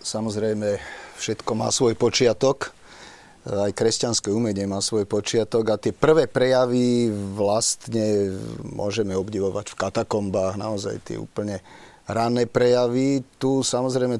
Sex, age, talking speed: male, 40-59, 115 wpm